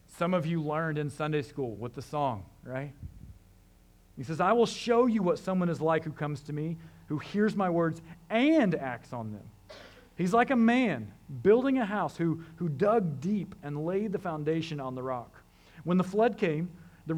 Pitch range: 140-205 Hz